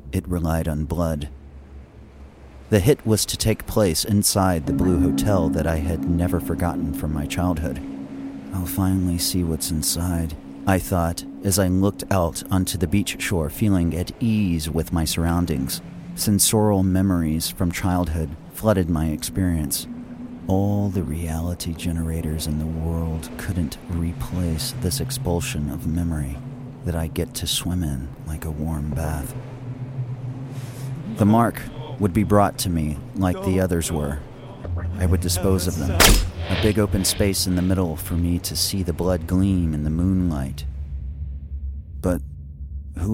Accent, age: American, 40-59